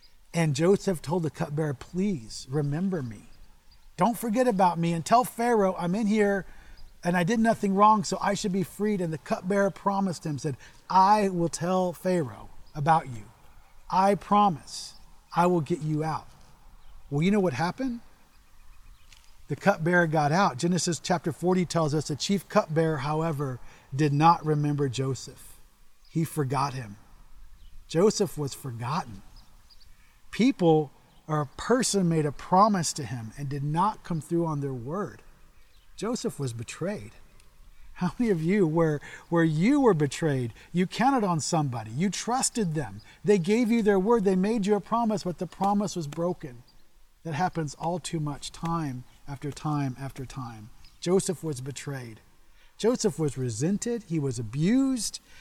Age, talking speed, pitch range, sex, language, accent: 40-59, 155 wpm, 140-195 Hz, male, English, American